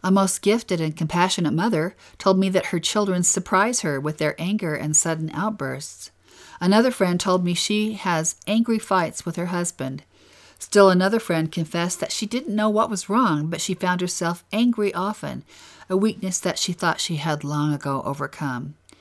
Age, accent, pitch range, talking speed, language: 50-69, American, 155-195 Hz, 180 wpm, English